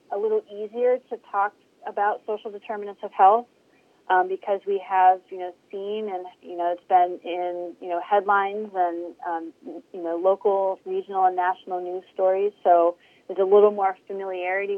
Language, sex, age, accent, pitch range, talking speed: English, female, 30-49, American, 170-200 Hz, 170 wpm